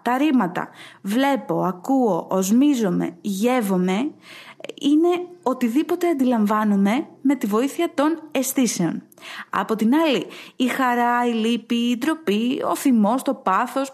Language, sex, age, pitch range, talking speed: English, female, 20-39, 195-275 Hz, 115 wpm